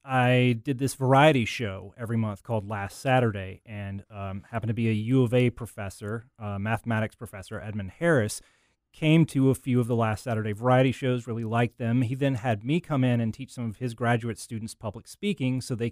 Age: 30-49